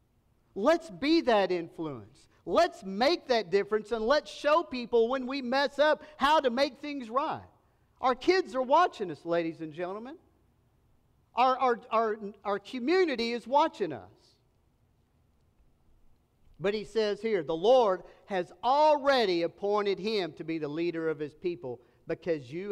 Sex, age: male, 50-69